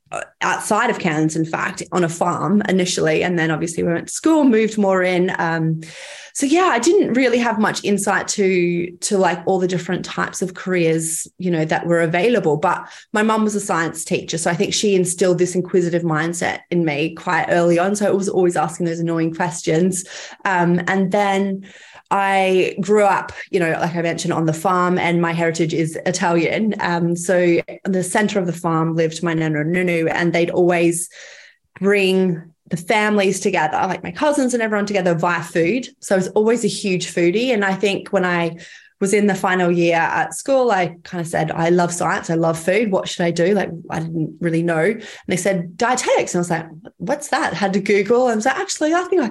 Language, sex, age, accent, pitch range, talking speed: English, female, 20-39, Australian, 170-210 Hz, 215 wpm